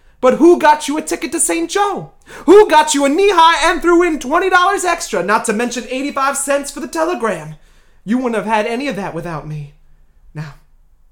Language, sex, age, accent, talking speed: English, male, 30-49, American, 200 wpm